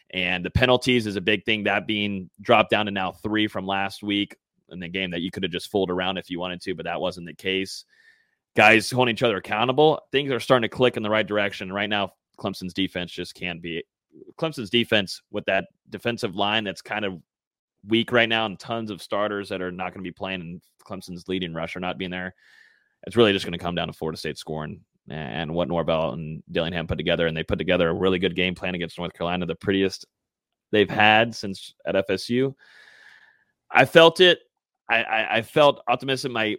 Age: 30-49